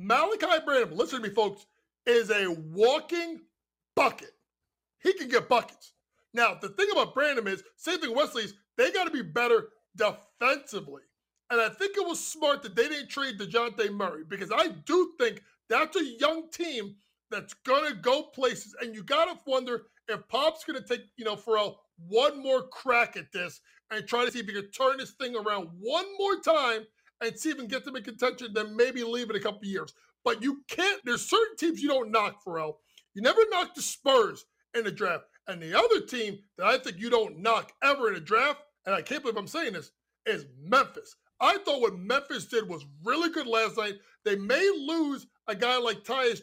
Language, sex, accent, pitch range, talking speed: English, male, American, 215-300 Hz, 210 wpm